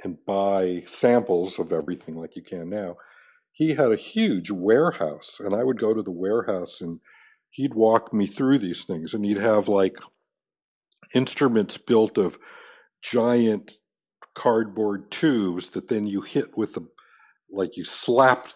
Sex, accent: male, American